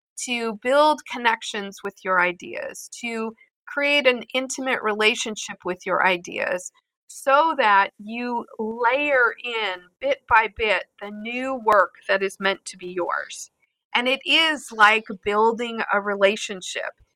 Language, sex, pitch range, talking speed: English, female, 210-265 Hz, 135 wpm